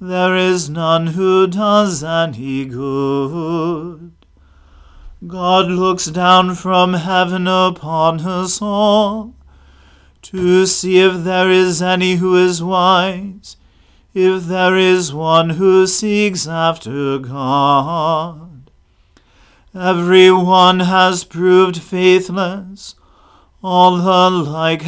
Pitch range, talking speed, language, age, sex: 165-185 Hz, 95 wpm, English, 40-59, male